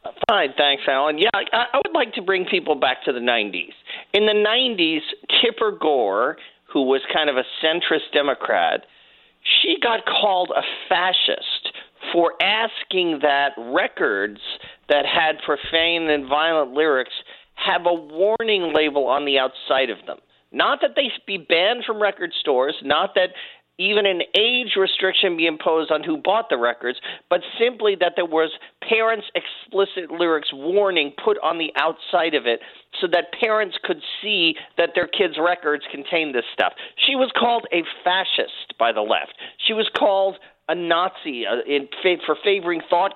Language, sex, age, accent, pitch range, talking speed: English, male, 40-59, American, 160-220 Hz, 160 wpm